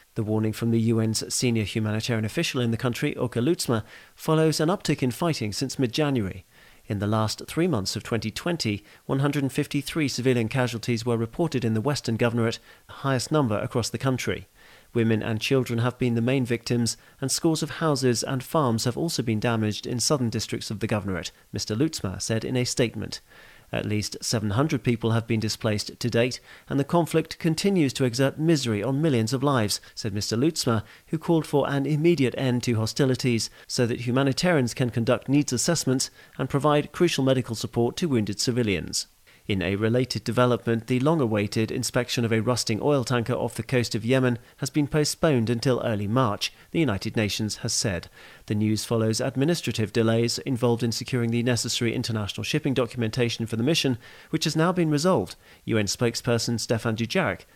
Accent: British